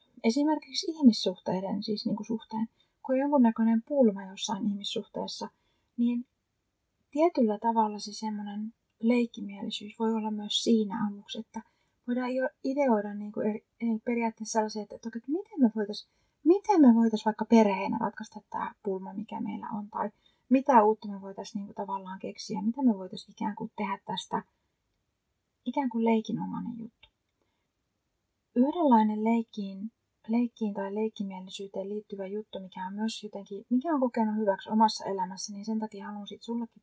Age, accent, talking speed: 30-49, native, 135 wpm